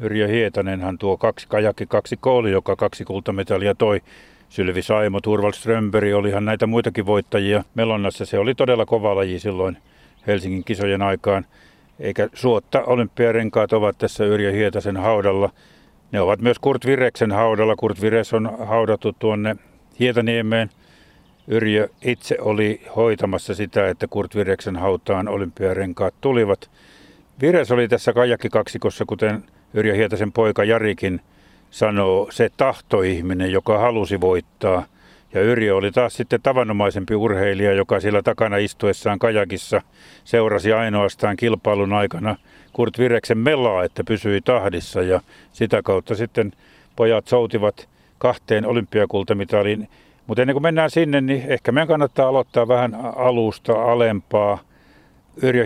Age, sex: 50-69, male